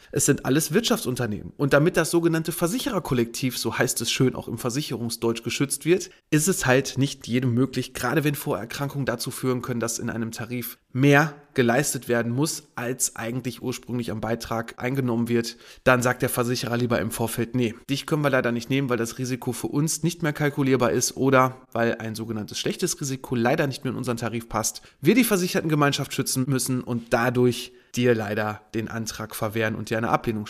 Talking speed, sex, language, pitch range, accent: 190 wpm, male, German, 120-150 Hz, German